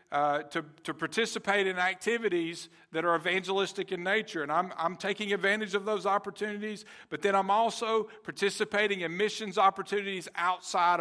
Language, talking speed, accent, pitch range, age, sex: English, 155 wpm, American, 170-210 Hz, 50-69, male